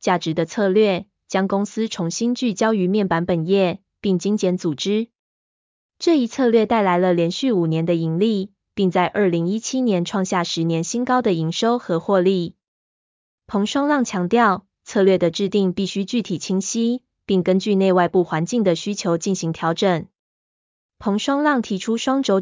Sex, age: female, 20-39